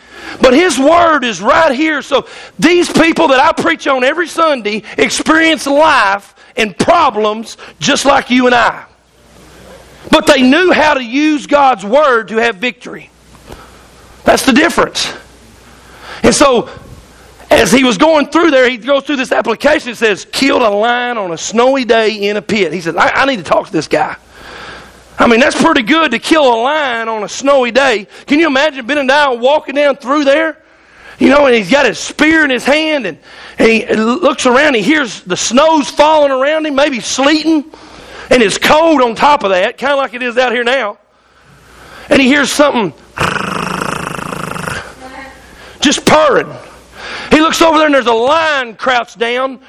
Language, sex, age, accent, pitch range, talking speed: English, male, 40-59, American, 245-305 Hz, 185 wpm